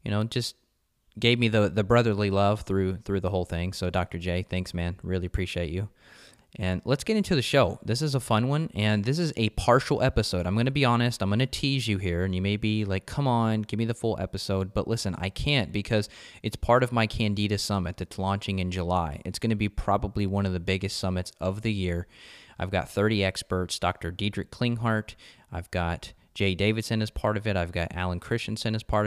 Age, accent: 20-39, American